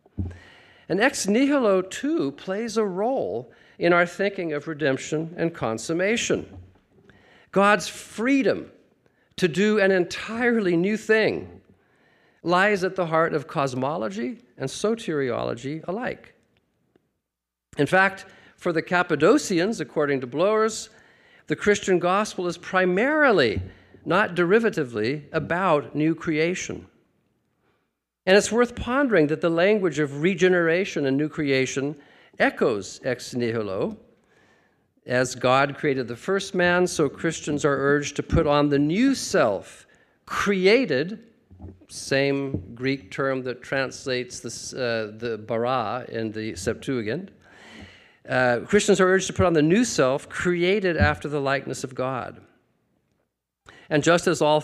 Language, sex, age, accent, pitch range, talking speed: English, male, 50-69, American, 135-195 Hz, 125 wpm